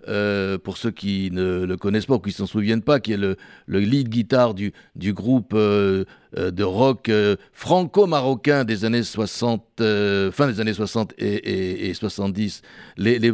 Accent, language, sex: French, French, male